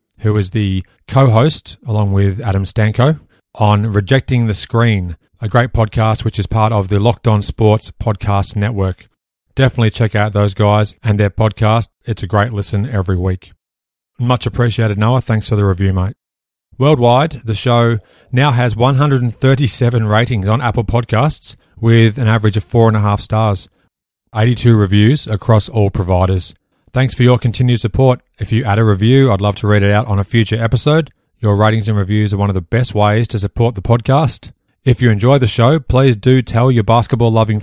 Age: 30-49